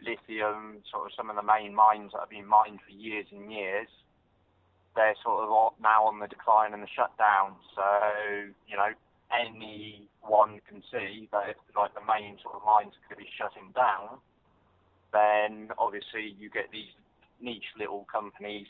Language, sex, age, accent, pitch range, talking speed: English, male, 30-49, British, 100-110 Hz, 170 wpm